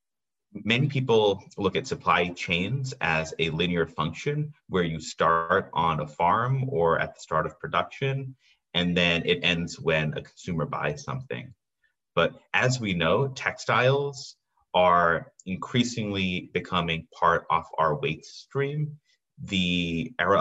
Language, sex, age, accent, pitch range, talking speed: English, male, 30-49, American, 80-125 Hz, 135 wpm